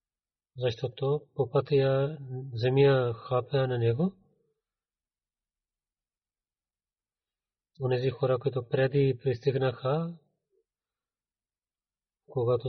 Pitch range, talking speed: 125-150 Hz, 65 wpm